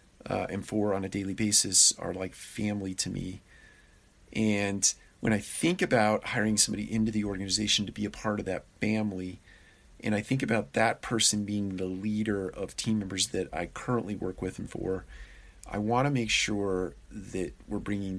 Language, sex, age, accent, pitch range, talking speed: English, male, 40-59, American, 95-110 Hz, 185 wpm